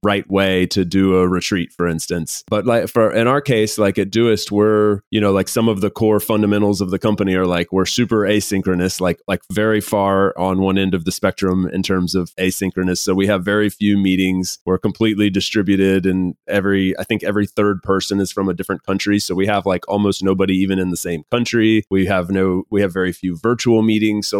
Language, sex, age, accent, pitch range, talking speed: English, male, 30-49, American, 95-105 Hz, 220 wpm